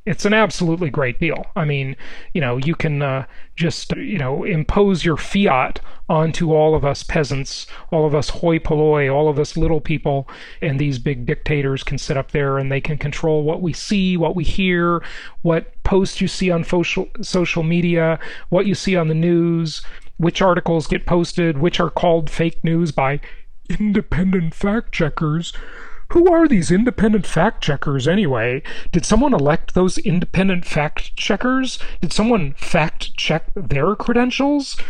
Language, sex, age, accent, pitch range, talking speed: English, male, 40-59, American, 155-215 Hz, 160 wpm